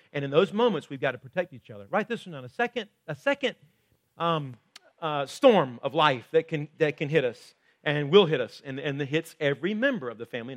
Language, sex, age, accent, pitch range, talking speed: English, male, 40-59, American, 135-180 Hz, 240 wpm